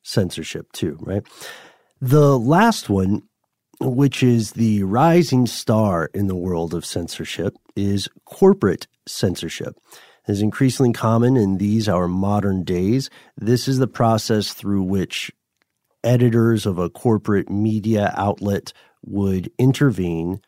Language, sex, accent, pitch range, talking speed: English, male, American, 90-115 Hz, 125 wpm